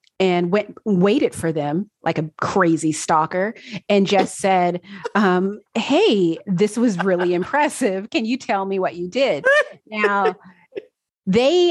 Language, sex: English, female